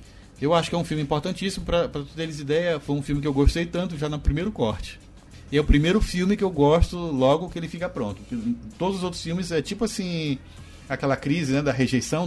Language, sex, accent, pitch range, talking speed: Portuguese, male, Brazilian, 115-160 Hz, 235 wpm